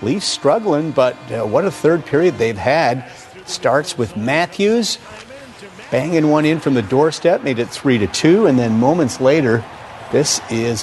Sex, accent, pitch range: male, American, 120-150 Hz